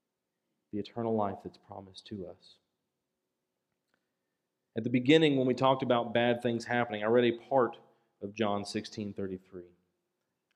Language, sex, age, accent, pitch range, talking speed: English, male, 40-59, American, 105-140 Hz, 135 wpm